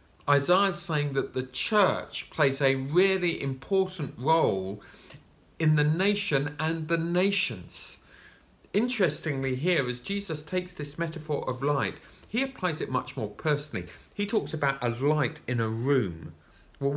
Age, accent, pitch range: 40-59, British, 130-175 Hz